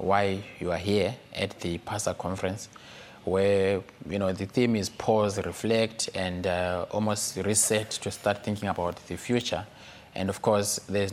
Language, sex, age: English, male, 20-39